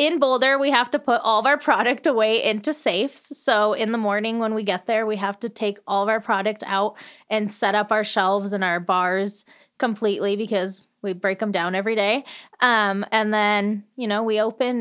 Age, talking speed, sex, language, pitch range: 20-39, 215 wpm, female, English, 200-235 Hz